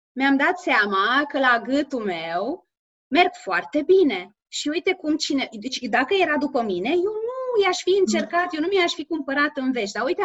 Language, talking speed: Romanian, 195 wpm